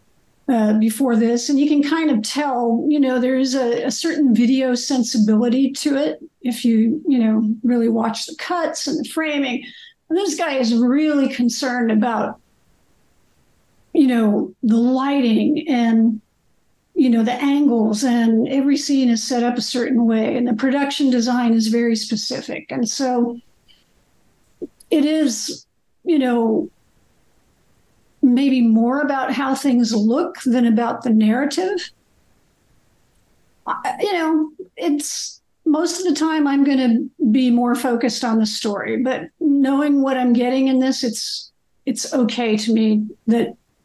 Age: 60-79